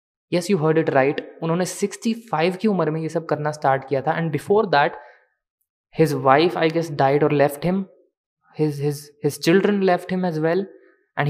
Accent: native